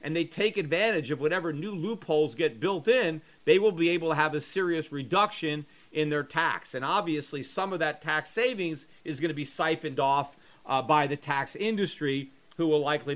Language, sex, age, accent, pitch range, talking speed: English, male, 40-59, American, 150-180 Hz, 200 wpm